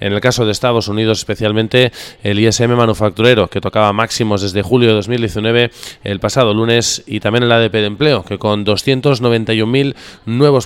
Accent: Spanish